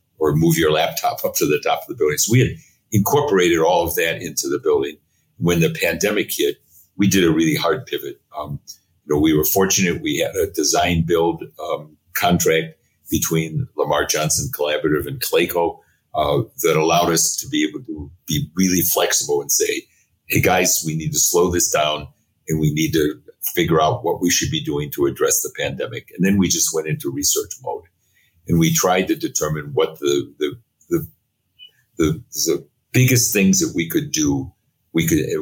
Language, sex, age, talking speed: English, male, 50-69, 190 wpm